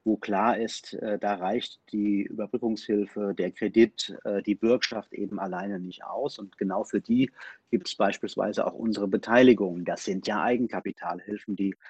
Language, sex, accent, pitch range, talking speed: German, male, German, 100-125 Hz, 150 wpm